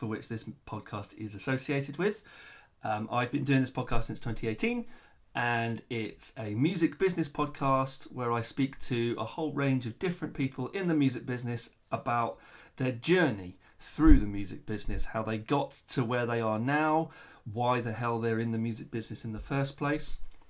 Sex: male